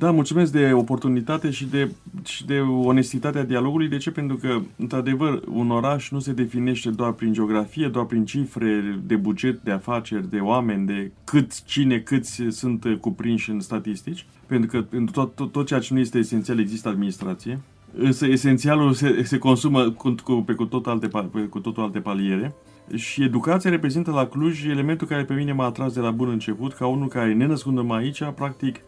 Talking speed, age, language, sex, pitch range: 185 wpm, 30-49, Romanian, male, 110-135 Hz